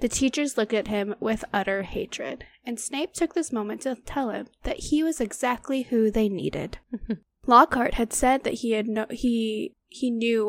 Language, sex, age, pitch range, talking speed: English, female, 10-29, 210-255 Hz, 190 wpm